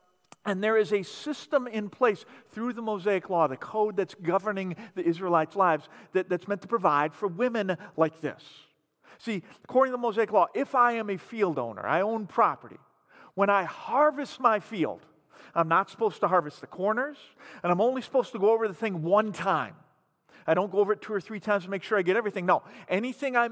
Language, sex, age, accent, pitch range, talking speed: English, male, 50-69, American, 170-220 Hz, 210 wpm